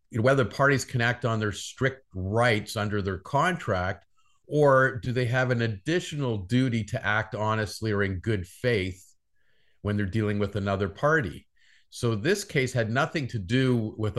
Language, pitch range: English, 100-125 Hz